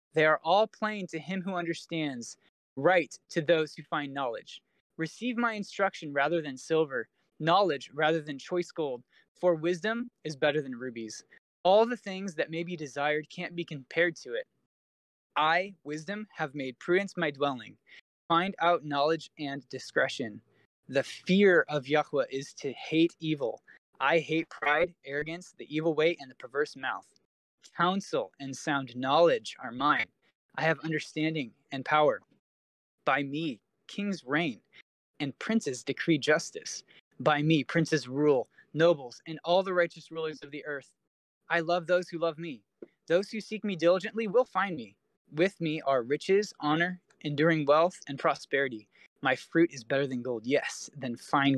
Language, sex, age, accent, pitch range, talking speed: English, male, 20-39, American, 145-175 Hz, 160 wpm